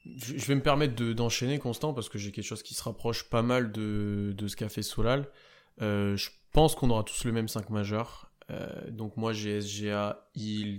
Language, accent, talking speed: French, French, 215 wpm